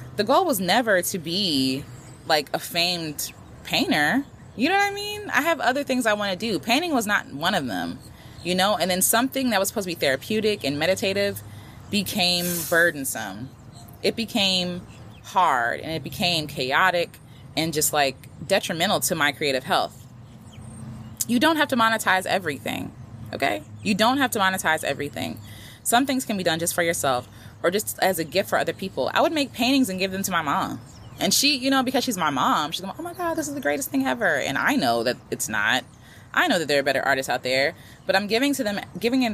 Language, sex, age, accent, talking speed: English, female, 20-39, American, 210 wpm